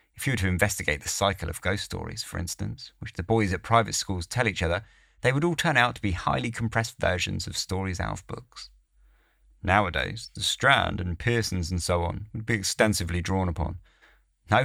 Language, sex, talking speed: English, male, 205 wpm